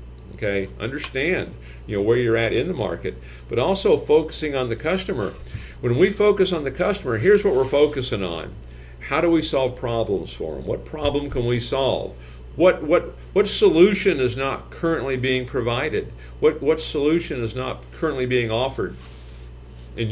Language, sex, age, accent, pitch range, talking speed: English, male, 50-69, American, 85-135 Hz, 170 wpm